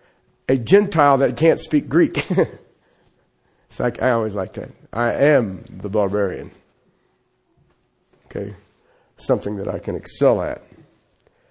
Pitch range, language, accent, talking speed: 130-190 Hz, English, American, 120 wpm